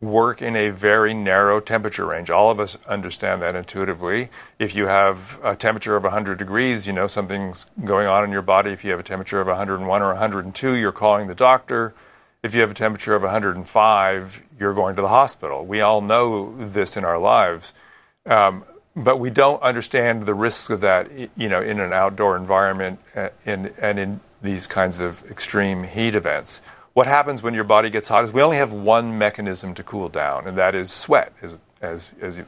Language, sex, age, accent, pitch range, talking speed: English, male, 40-59, American, 95-110 Hz, 200 wpm